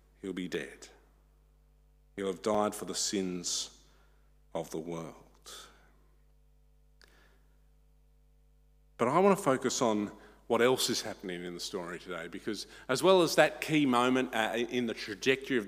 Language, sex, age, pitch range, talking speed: English, male, 50-69, 100-130 Hz, 140 wpm